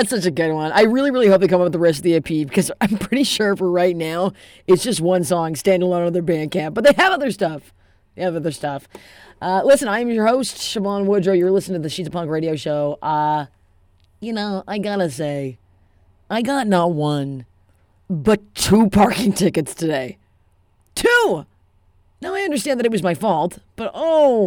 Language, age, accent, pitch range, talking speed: English, 30-49, American, 160-210 Hz, 215 wpm